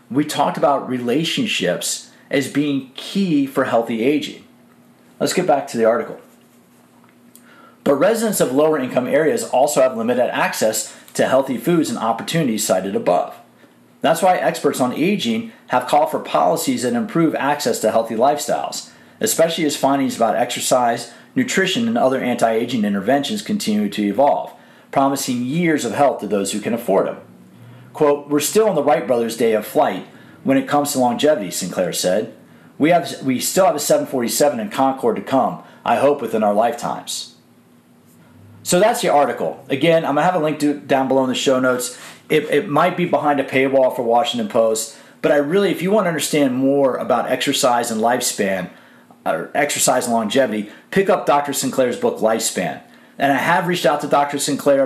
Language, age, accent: English, 40-59, American